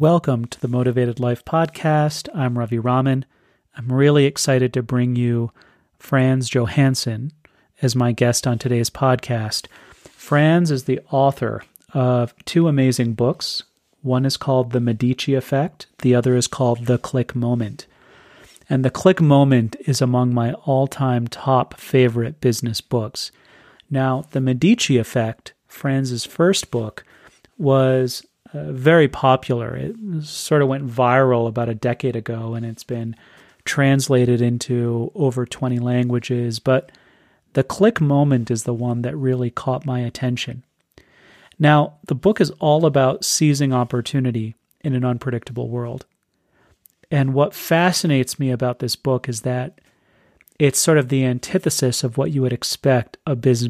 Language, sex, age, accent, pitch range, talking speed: English, male, 30-49, American, 120-140 Hz, 145 wpm